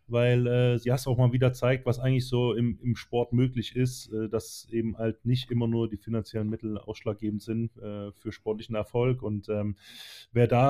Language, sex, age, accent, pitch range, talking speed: German, male, 20-39, German, 115-135 Hz, 200 wpm